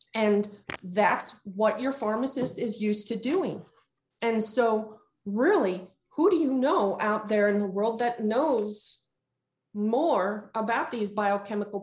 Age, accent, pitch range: 40-59, American, 195-230 Hz